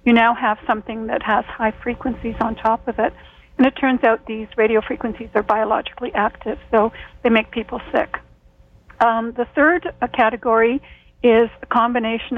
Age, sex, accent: 50-69, female, American